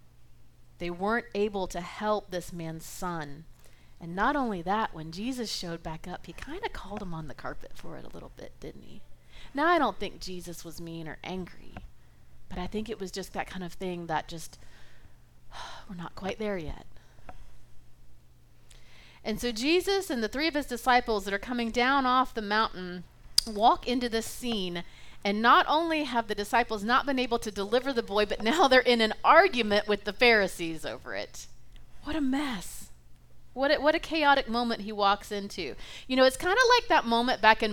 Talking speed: 195 wpm